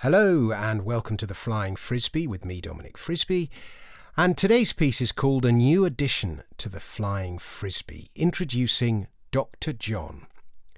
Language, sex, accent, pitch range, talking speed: English, male, British, 110-150 Hz, 145 wpm